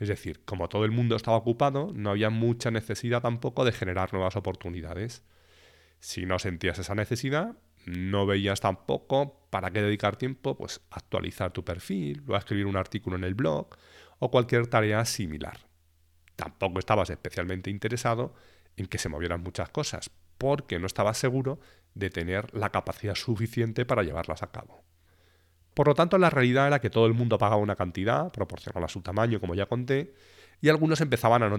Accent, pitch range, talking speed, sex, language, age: Spanish, 90-120 Hz, 175 wpm, male, Spanish, 30-49